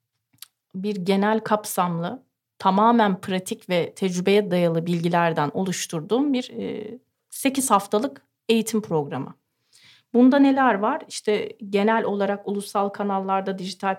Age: 30-49